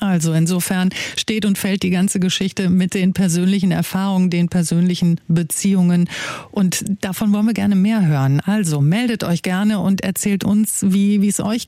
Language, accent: German, German